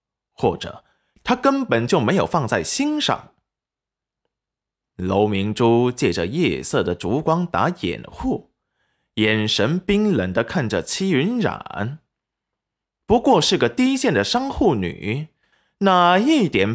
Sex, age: male, 20-39